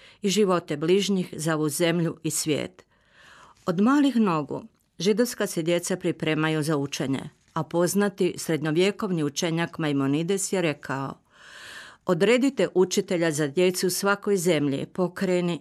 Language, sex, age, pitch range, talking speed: Croatian, female, 50-69, 155-190 Hz, 115 wpm